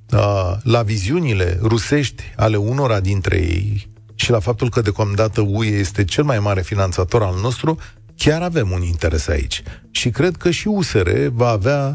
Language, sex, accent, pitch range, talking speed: Romanian, male, native, 100-135 Hz, 160 wpm